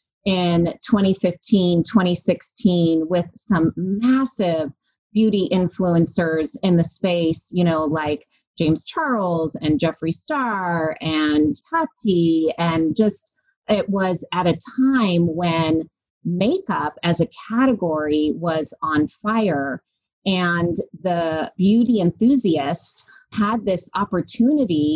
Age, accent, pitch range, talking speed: 30-49, American, 165-210 Hz, 105 wpm